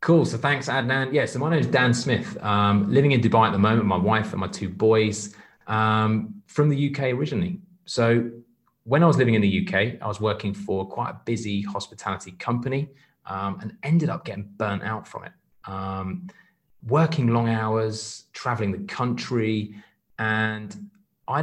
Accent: British